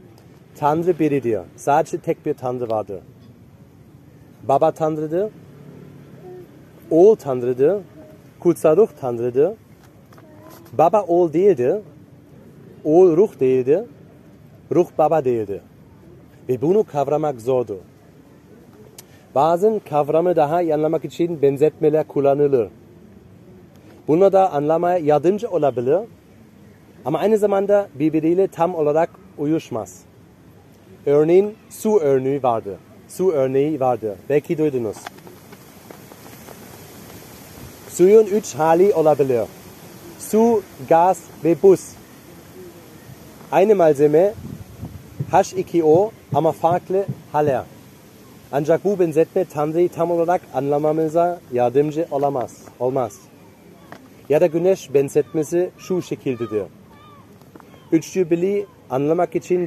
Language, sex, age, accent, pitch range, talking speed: Turkish, male, 40-59, German, 140-180 Hz, 90 wpm